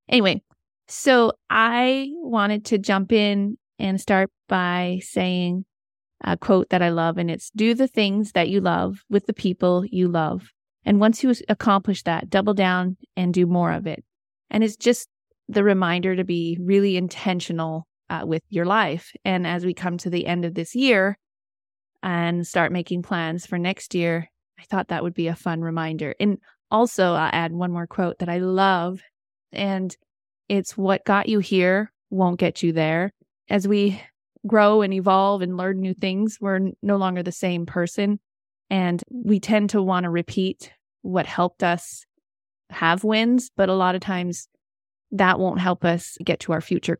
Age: 20-39